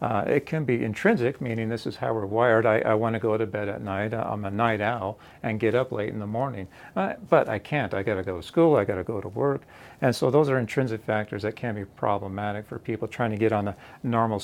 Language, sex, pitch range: English, male, 110-125 Hz